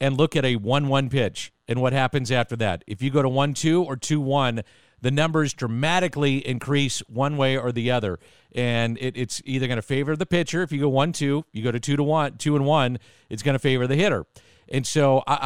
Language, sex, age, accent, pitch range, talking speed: English, male, 50-69, American, 125-150 Hz, 240 wpm